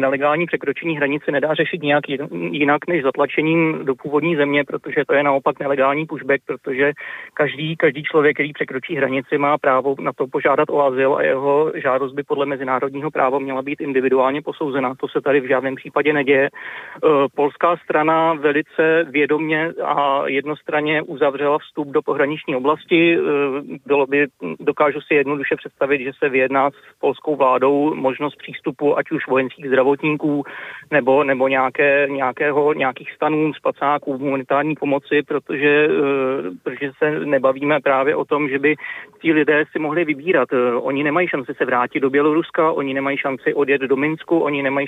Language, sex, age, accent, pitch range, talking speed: Czech, male, 30-49, native, 135-150 Hz, 155 wpm